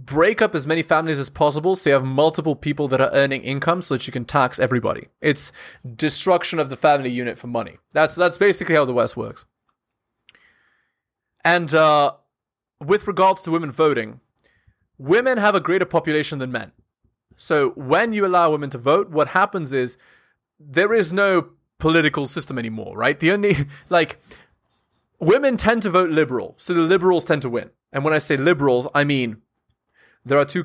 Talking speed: 180 wpm